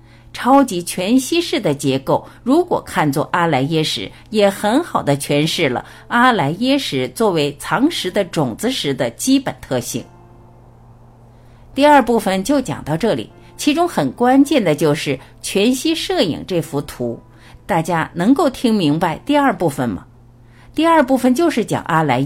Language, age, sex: Chinese, 50-69, female